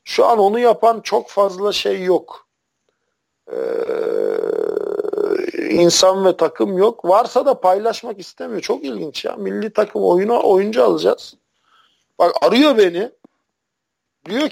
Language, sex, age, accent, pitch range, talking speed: Turkish, male, 50-69, native, 180-250 Hz, 120 wpm